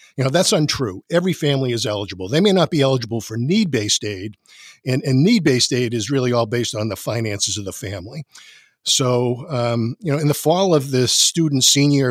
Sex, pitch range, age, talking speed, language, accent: male, 115-145 Hz, 50-69, 210 wpm, English, American